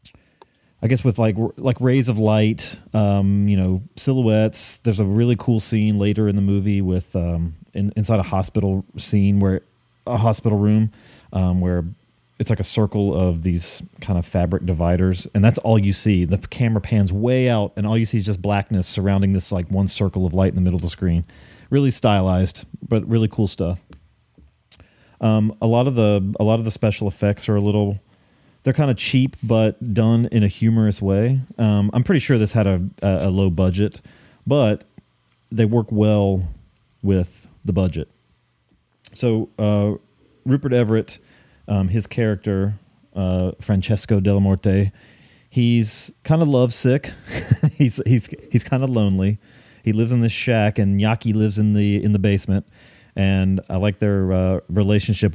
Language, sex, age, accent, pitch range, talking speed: English, male, 30-49, American, 95-115 Hz, 175 wpm